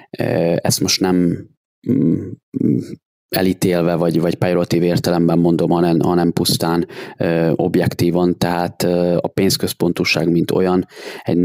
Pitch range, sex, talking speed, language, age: 85-90 Hz, male, 100 wpm, Hungarian, 20-39